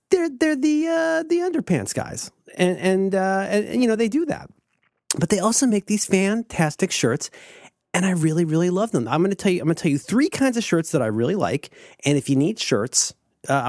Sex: male